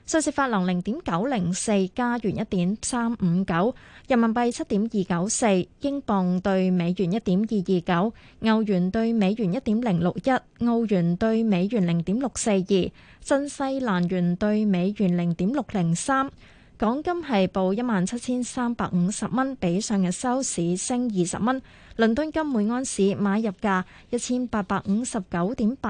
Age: 20-39